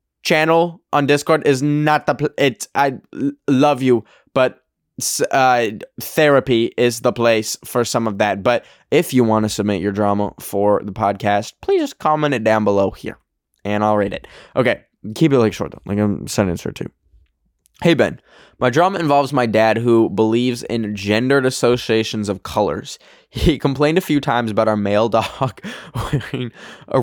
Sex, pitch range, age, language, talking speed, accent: male, 105-140 Hz, 10-29, English, 180 wpm, American